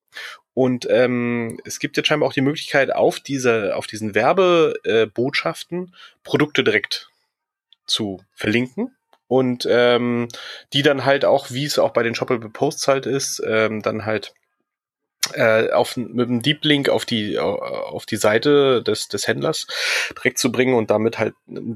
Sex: male